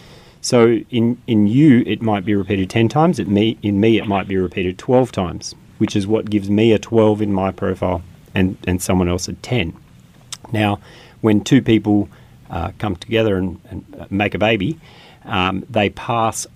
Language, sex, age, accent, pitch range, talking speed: English, male, 40-59, Australian, 95-115 Hz, 185 wpm